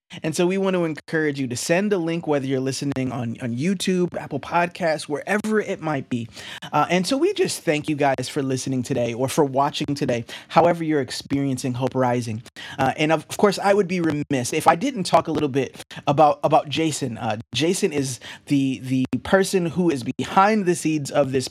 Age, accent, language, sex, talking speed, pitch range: 20-39, American, English, male, 210 wpm, 135-185 Hz